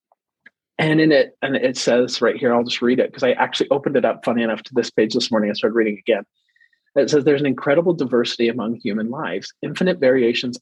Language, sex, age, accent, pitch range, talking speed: English, male, 30-49, American, 120-160 Hz, 225 wpm